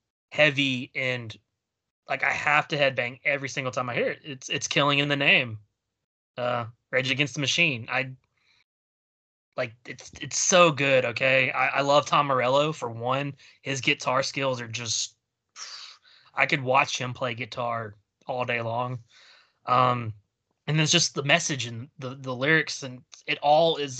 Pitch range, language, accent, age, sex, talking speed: 125-150 Hz, English, American, 20-39, male, 165 wpm